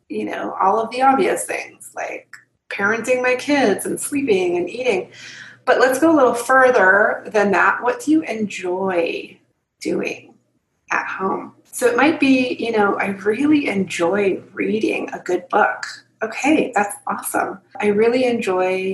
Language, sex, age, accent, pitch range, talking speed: English, female, 30-49, American, 195-240 Hz, 155 wpm